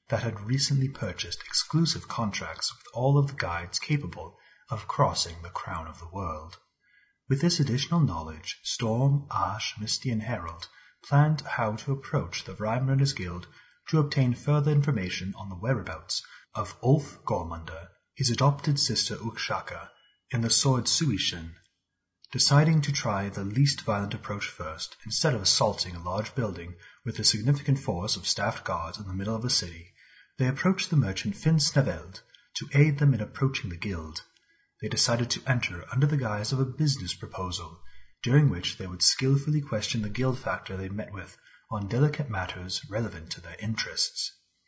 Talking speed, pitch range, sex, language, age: 165 wpm, 90-135 Hz, male, English, 30-49